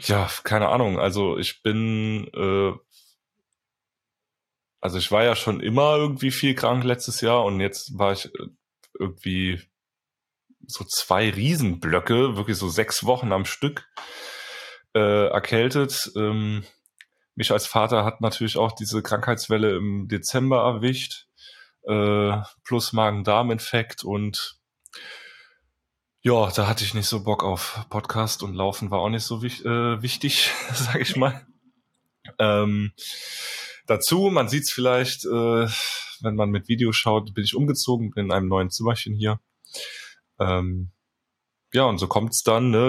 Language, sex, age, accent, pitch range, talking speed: German, male, 20-39, German, 100-120 Hz, 140 wpm